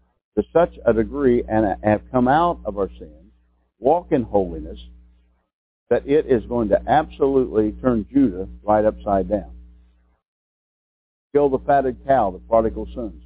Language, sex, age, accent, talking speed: English, male, 60-79, American, 145 wpm